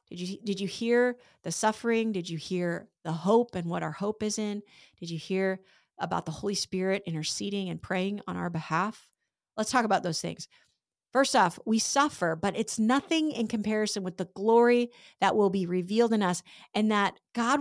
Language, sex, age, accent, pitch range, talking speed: English, female, 40-59, American, 180-225 Hz, 190 wpm